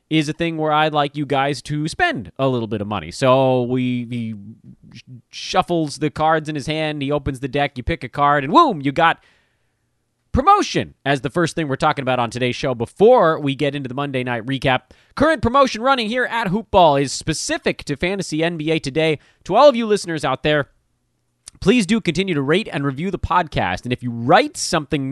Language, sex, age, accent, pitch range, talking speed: English, male, 30-49, American, 135-190 Hz, 210 wpm